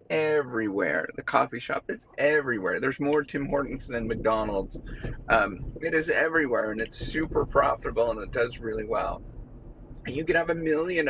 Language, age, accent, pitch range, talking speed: English, 30-49, American, 115-150 Hz, 160 wpm